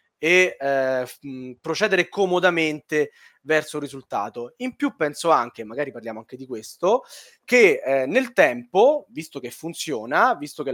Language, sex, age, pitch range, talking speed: Italian, male, 20-39, 135-185 Hz, 140 wpm